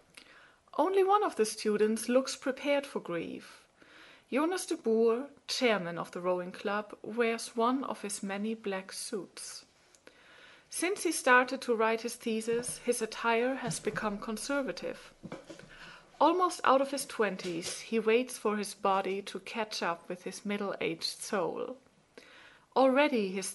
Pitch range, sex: 195-260 Hz, female